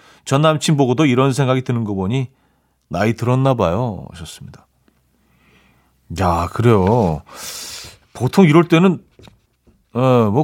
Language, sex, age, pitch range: Korean, male, 40-59, 100-140 Hz